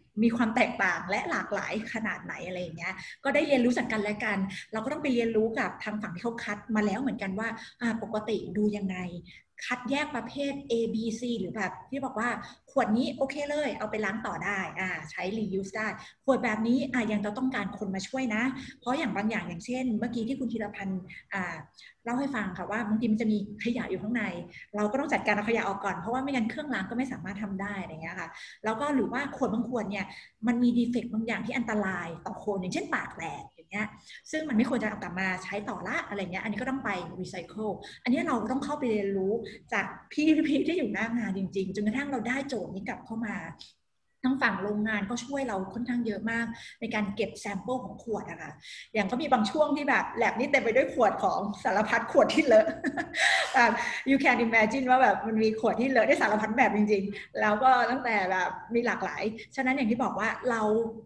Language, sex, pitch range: Thai, female, 200-250 Hz